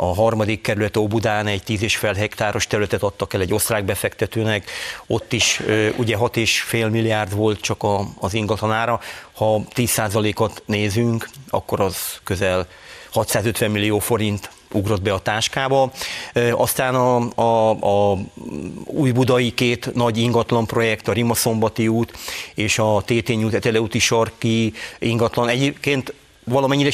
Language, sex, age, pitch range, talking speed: English, male, 40-59, 110-120 Hz, 145 wpm